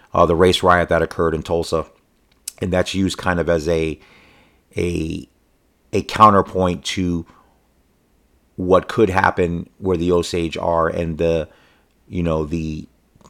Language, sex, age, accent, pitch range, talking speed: English, male, 40-59, American, 85-95 Hz, 140 wpm